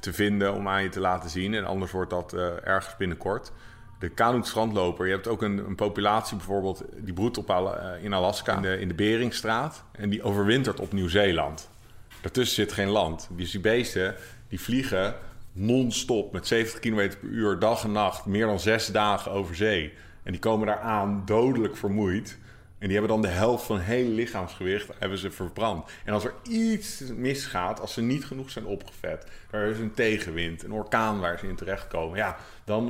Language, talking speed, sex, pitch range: Dutch, 190 wpm, male, 100-115 Hz